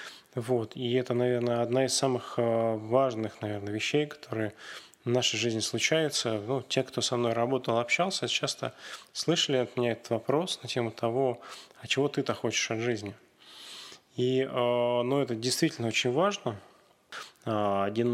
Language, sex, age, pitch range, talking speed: Russian, male, 20-39, 115-130 Hz, 145 wpm